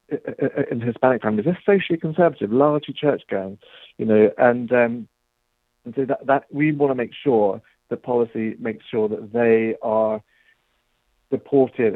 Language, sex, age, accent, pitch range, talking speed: English, male, 50-69, British, 115-145 Hz, 145 wpm